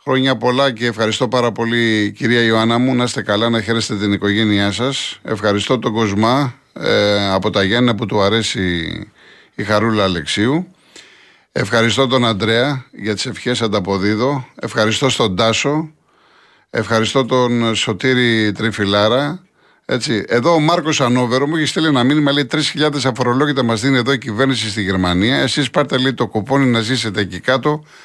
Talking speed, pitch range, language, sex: 155 wpm, 105-135 Hz, Greek, male